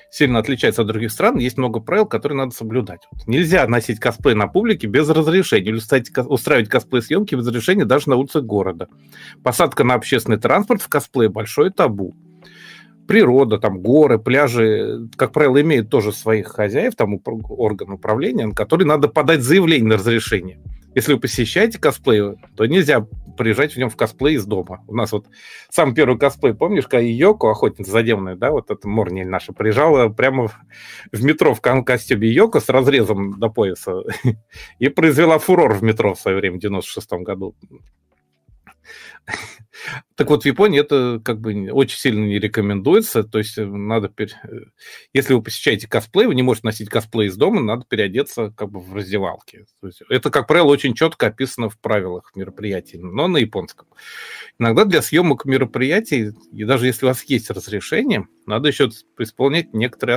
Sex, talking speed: male, 170 wpm